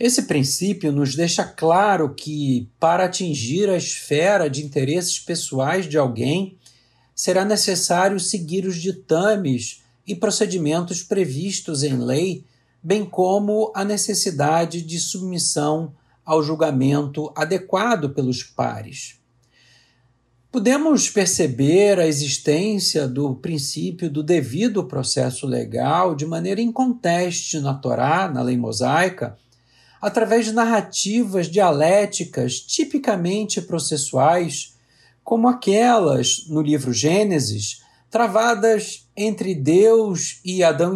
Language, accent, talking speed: Portuguese, Brazilian, 105 wpm